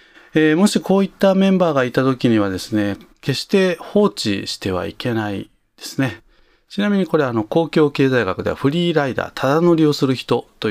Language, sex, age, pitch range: Japanese, male, 40-59, 105-160 Hz